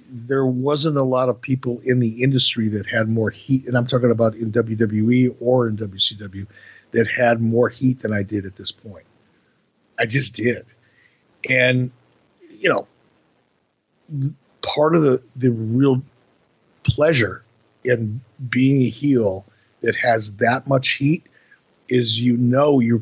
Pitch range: 115-140 Hz